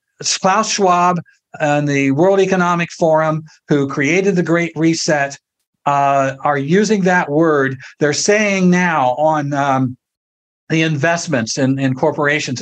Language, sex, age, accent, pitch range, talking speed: English, male, 60-79, American, 145-185 Hz, 130 wpm